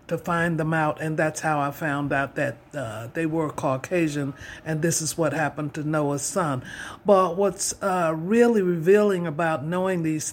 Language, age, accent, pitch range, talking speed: English, 50-69, American, 155-195 Hz, 180 wpm